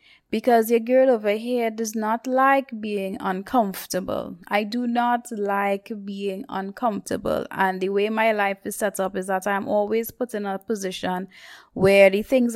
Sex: female